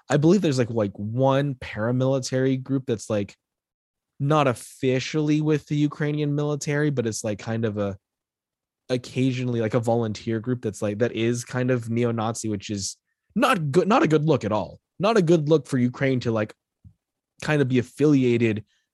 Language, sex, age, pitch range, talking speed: English, male, 20-39, 110-150 Hz, 175 wpm